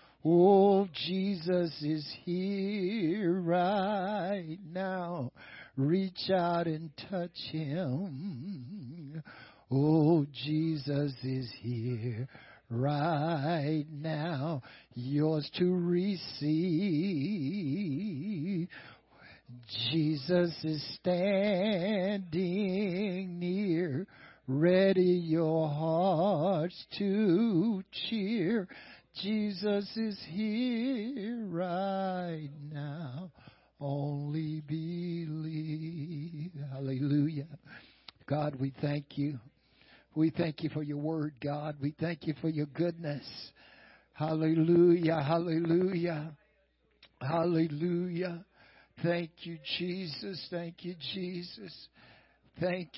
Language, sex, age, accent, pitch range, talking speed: English, male, 60-79, American, 150-180 Hz, 70 wpm